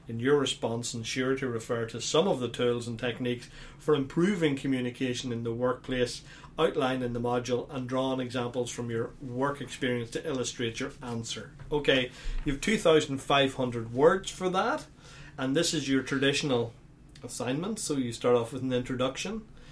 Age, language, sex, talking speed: 40-59, English, male, 165 wpm